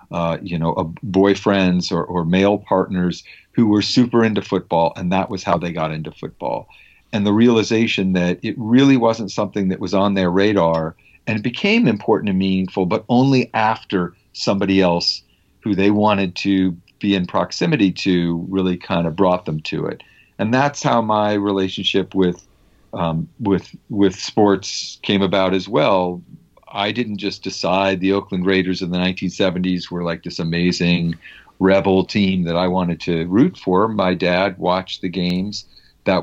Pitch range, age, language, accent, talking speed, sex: 90-100 Hz, 50-69, English, American, 170 wpm, male